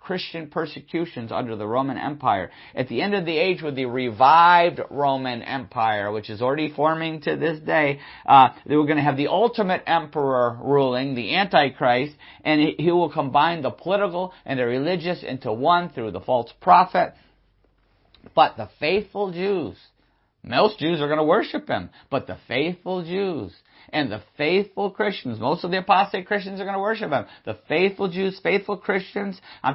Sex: male